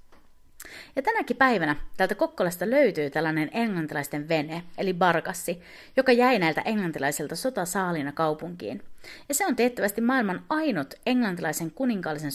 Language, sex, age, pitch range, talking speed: Finnish, female, 30-49, 155-260 Hz, 120 wpm